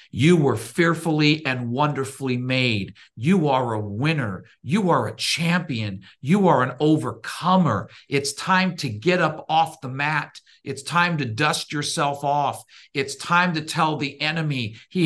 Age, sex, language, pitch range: 50-69, male, English, 135-185 Hz